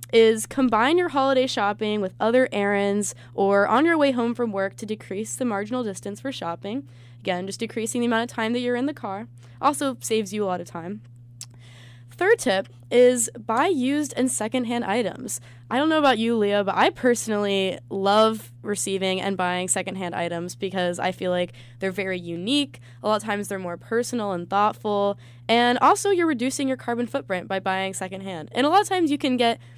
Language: English